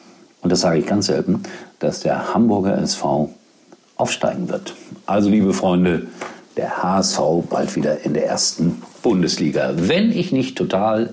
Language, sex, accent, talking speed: German, male, German, 145 wpm